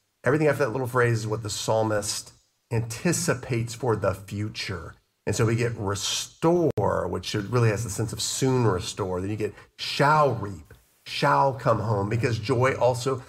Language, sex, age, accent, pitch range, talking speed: English, male, 40-59, American, 105-125 Hz, 165 wpm